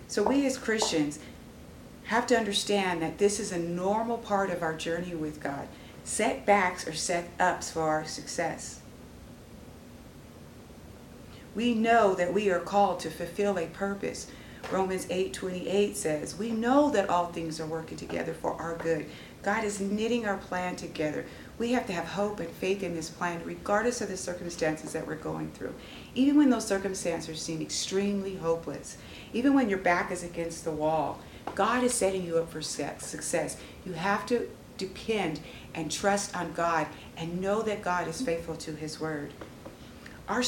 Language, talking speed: English, 165 wpm